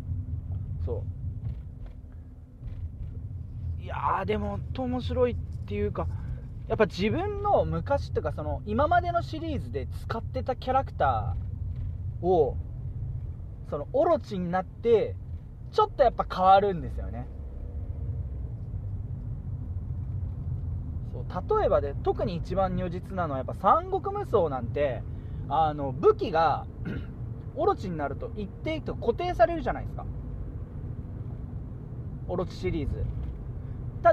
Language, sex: Japanese, male